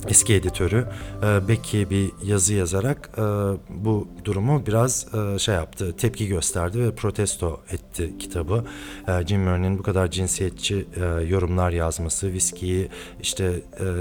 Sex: male